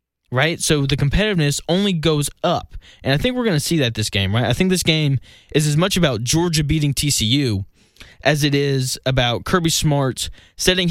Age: 20-39